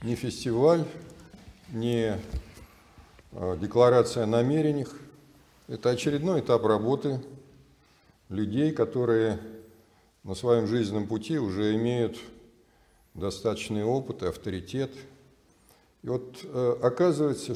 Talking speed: 85 wpm